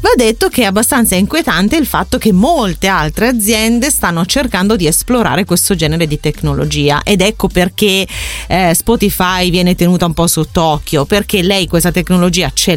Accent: native